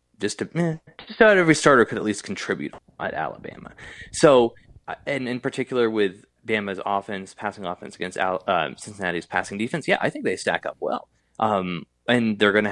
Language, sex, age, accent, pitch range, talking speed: English, male, 20-39, American, 100-140 Hz, 185 wpm